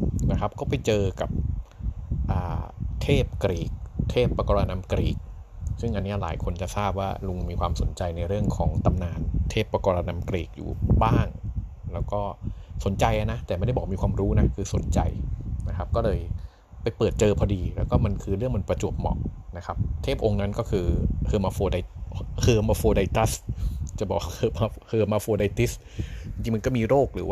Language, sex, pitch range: Thai, male, 90-110 Hz